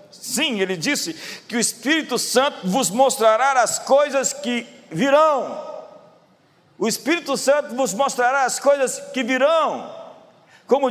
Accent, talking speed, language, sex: Brazilian, 125 wpm, Portuguese, male